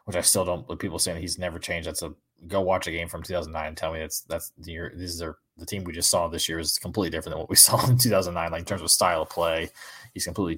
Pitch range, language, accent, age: 85-105 Hz, English, American, 20-39